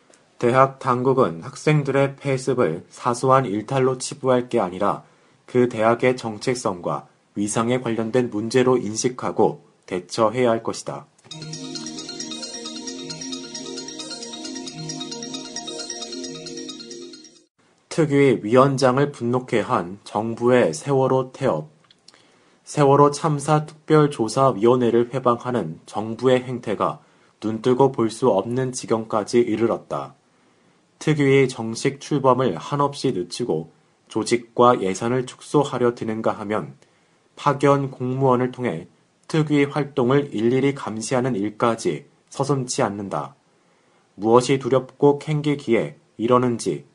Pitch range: 115-140 Hz